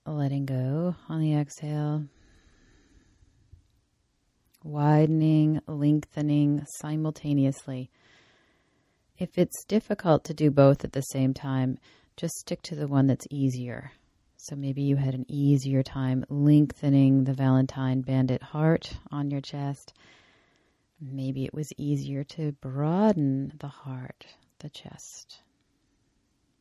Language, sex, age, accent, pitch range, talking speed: English, female, 30-49, American, 135-155 Hz, 115 wpm